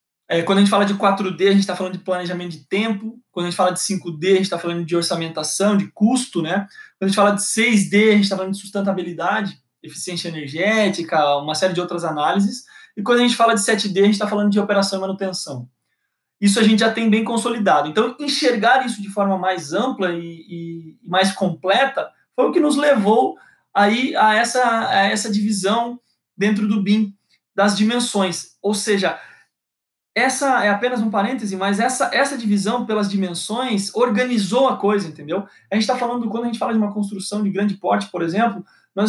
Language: Portuguese